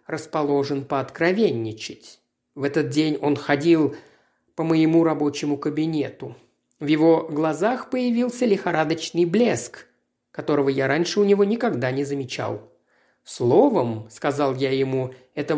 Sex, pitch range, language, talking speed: male, 145-210 Hz, Russian, 125 wpm